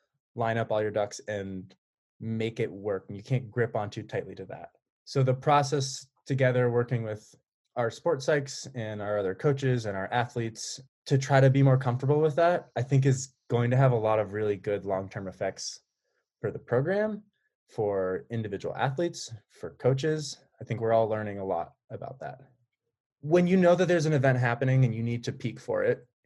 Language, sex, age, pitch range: English, male, 20-39, 110-135 Hz